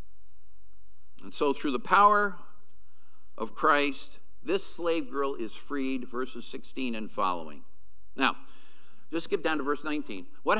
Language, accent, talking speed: English, American, 135 wpm